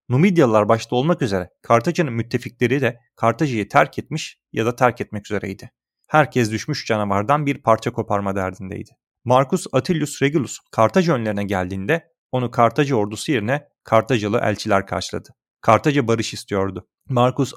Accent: native